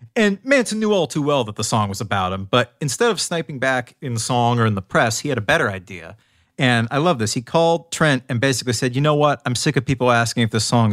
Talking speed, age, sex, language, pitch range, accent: 275 wpm, 30-49, male, English, 110-140 Hz, American